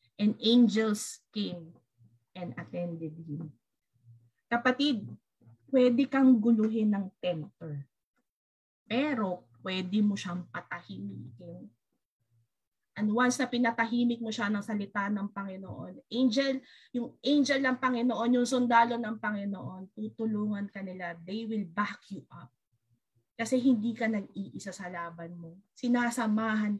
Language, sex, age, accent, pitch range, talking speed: English, female, 20-39, Filipino, 185-245 Hz, 115 wpm